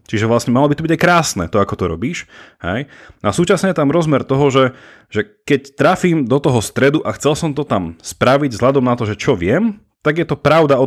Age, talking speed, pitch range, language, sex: 30-49, 230 wpm, 105-140 Hz, Slovak, male